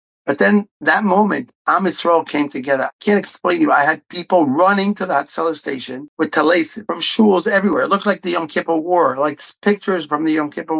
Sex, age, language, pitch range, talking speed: male, 40-59, English, 145-195 Hz, 210 wpm